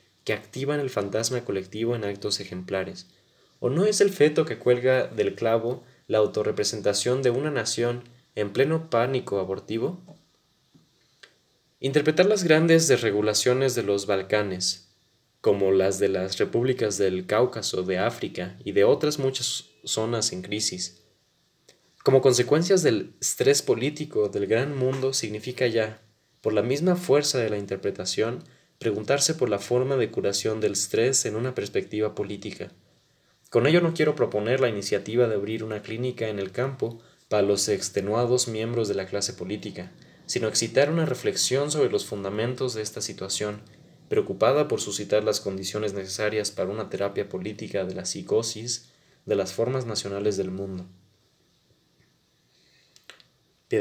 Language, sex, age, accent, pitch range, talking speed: Spanish, male, 20-39, Mexican, 100-130 Hz, 145 wpm